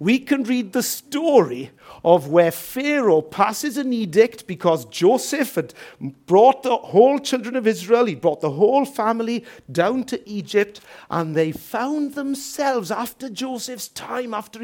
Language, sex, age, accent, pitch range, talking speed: English, male, 50-69, British, 170-250 Hz, 150 wpm